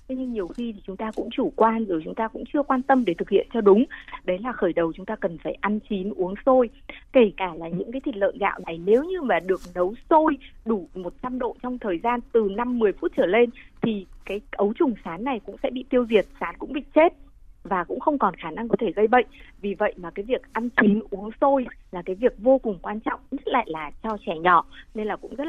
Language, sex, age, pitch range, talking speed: Vietnamese, female, 20-39, 190-250 Hz, 260 wpm